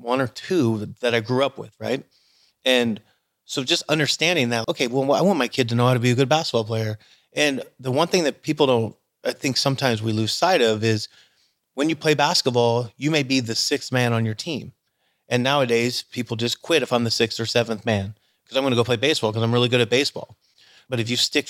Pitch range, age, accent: 115-130 Hz, 30-49, American